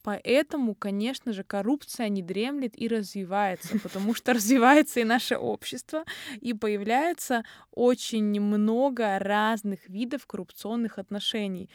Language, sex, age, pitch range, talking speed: Russian, female, 20-39, 200-235 Hz, 110 wpm